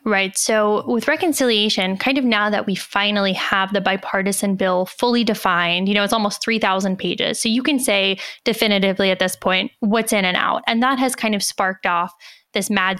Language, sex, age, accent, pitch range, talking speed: English, female, 10-29, American, 195-230 Hz, 205 wpm